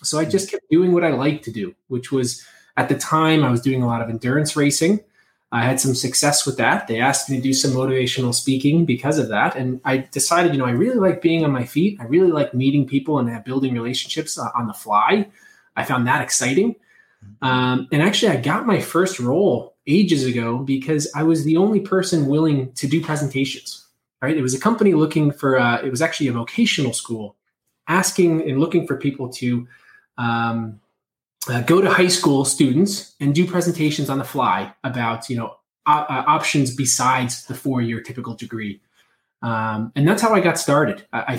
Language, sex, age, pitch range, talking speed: English, male, 20-39, 125-160 Hz, 200 wpm